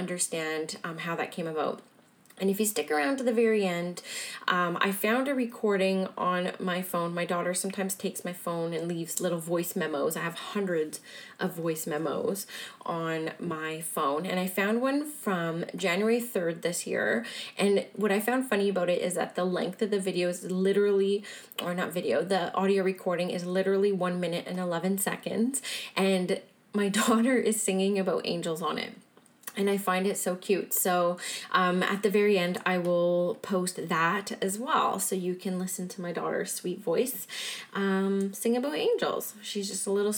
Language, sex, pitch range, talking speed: English, female, 175-215 Hz, 185 wpm